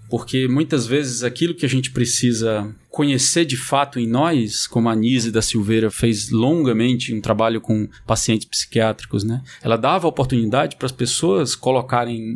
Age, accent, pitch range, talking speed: 20-39, Brazilian, 115-150 Hz, 160 wpm